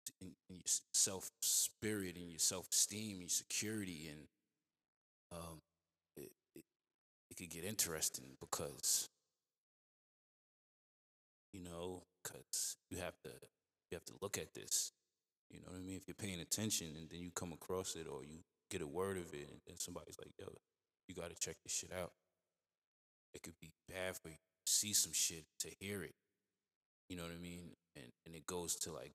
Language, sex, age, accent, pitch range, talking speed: English, male, 20-39, American, 80-95 Hz, 180 wpm